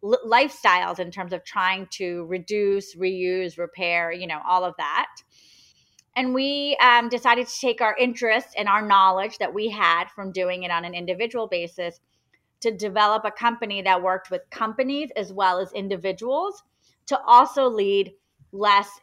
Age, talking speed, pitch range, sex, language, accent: 30-49, 160 wpm, 185-230 Hz, female, English, American